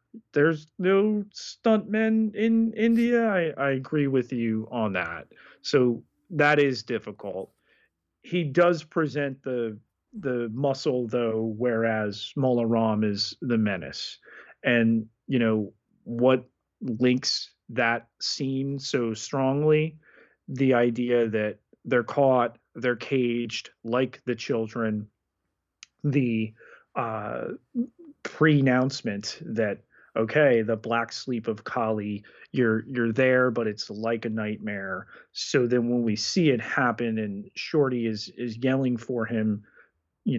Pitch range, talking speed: 110-130 Hz, 120 wpm